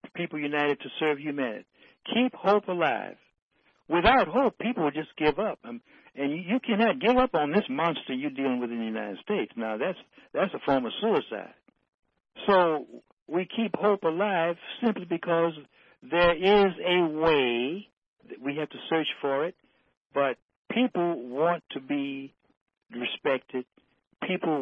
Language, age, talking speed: English, 60-79, 150 wpm